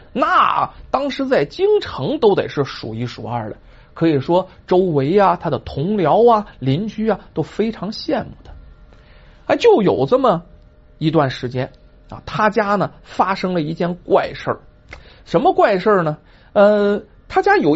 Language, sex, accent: Chinese, male, native